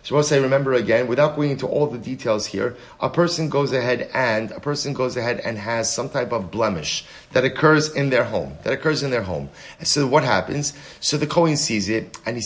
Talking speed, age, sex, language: 230 wpm, 30-49, male, English